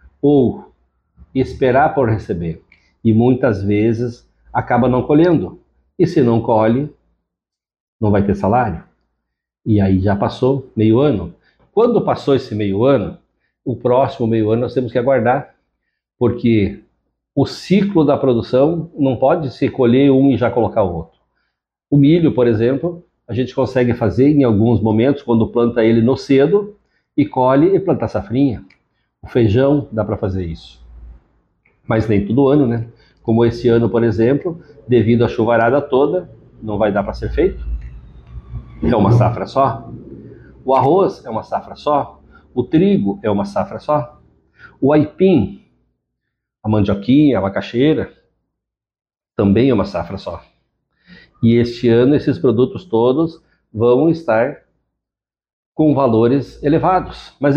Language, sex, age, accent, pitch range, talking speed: Portuguese, male, 60-79, Brazilian, 105-140 Hz, 145 wpm